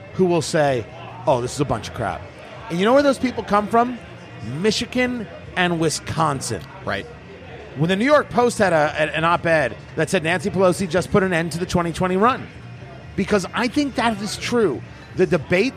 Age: 30-49